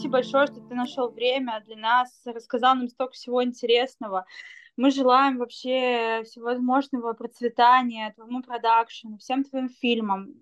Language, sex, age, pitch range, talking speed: Russian, female, 20-39, 225-260 Hz, 135 wpm